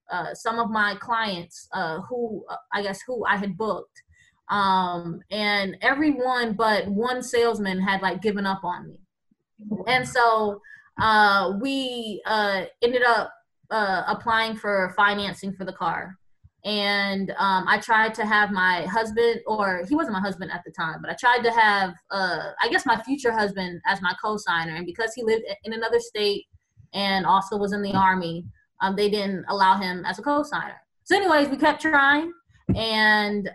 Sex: female